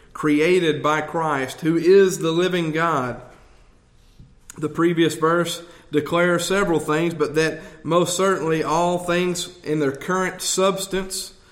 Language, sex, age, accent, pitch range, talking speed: English, male, 40-59, American, 140-170 Hz, 125 wpm